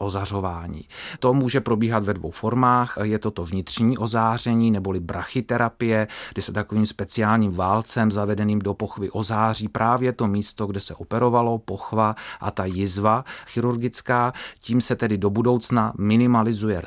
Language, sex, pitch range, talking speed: Czech, male, 100-120 Hz, 140 wpm